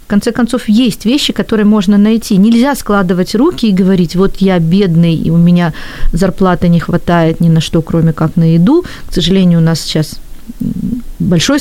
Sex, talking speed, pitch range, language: female, 180 wpm, 190-235 Hz, Ukrainian